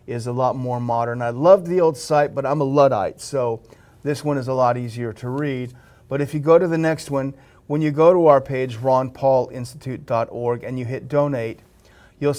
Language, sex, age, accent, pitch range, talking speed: English, male, 40-59, American, 120-145 Hz, 210 wpm